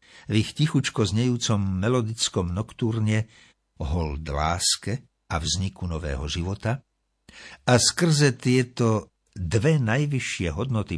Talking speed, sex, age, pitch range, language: 100 wpm, male, 60-79, 85-120 Hz, Slovak